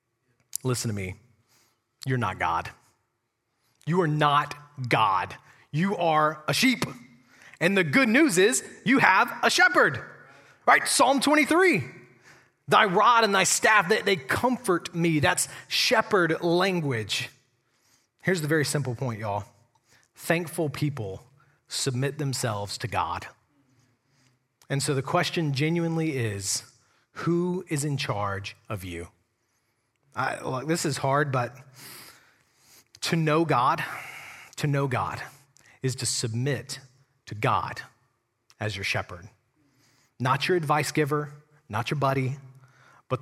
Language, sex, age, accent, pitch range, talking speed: English, male, 30-49, American, 120-165 Hz, 125 wpm